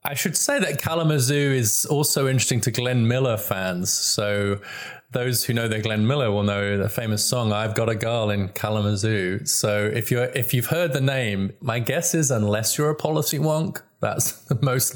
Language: English